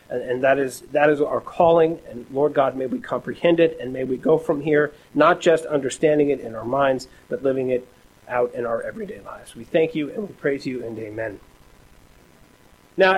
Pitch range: 135-190 Hz